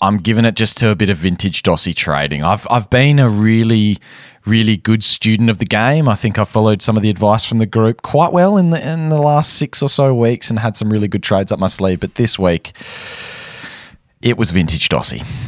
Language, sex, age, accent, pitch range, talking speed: English, male, 20-39, Australian, 95-125 Hz, 235 wpm